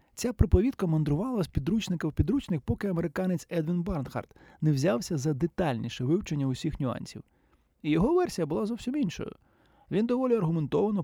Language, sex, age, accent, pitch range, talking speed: Ukrainian, male, 20-39, native, 135-195 Hz, 145 wpm